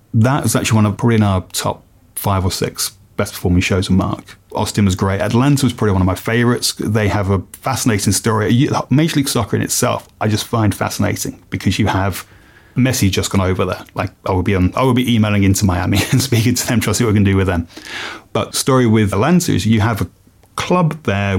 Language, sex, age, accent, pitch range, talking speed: English, male, 30-49, British, 95-110 Hz, 225 wpm